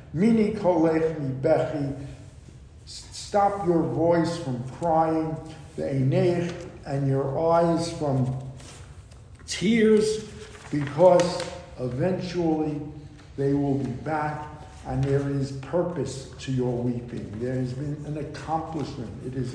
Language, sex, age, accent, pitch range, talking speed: English, male, 60-79, American, 130-165 Hz, 100 wpm